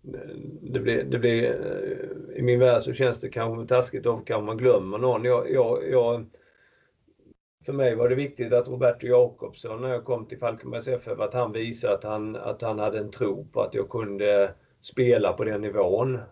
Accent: native